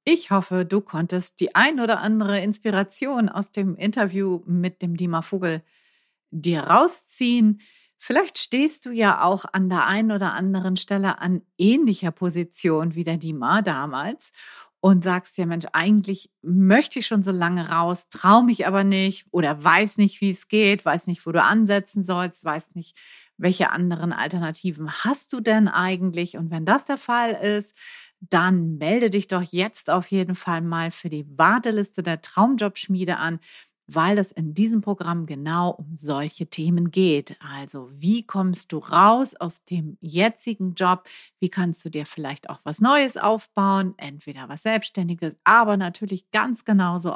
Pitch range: 170-210 Hz